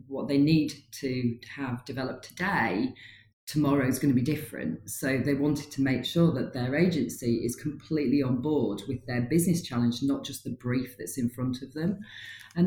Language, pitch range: English, 125-155 Hz